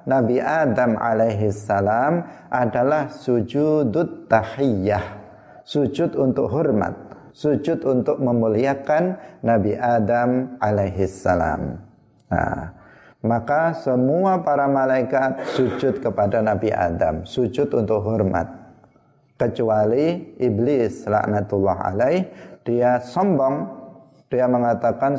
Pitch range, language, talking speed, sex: 115-140 Hz, Indonesian, 90 wpm, male